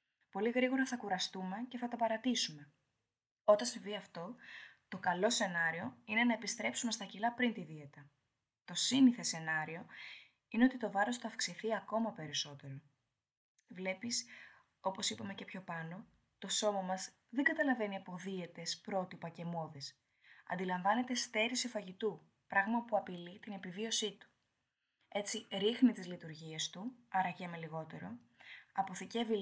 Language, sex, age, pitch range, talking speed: Greek, female, 20-39, 170-230 Hz, 135 wpm